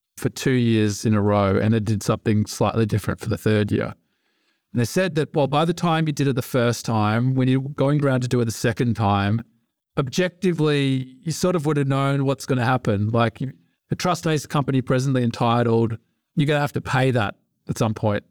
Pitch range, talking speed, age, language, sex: 110-140 Hz, 220 wpm, 40-59, English, male